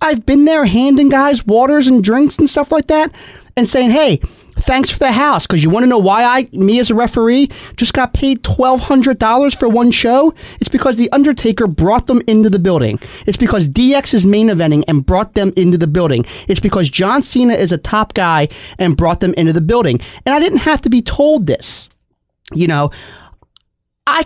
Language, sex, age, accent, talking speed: English, male, 30-49, American, 205 wpm